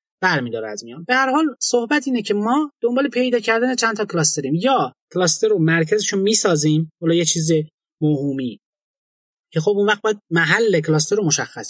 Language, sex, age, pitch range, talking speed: Persian, male, 30-49, 155-215 Hz, 175 wpm